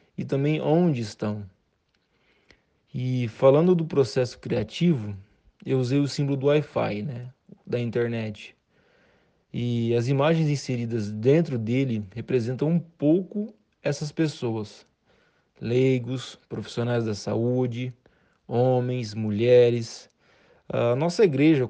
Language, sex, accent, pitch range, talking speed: Portuguese, male, Brazilian, 120-150 Hz, 105 wpm